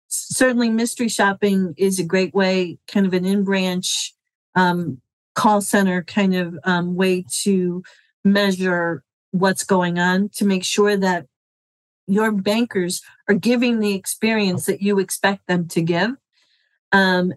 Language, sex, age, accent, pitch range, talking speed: English, female, 40-59, American, 185-210 Hz, 140 wpm